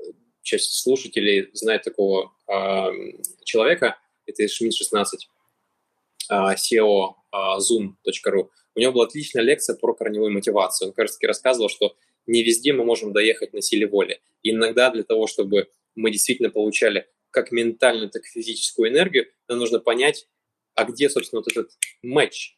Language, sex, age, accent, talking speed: Russian, male, 20-39, native, 150 wpm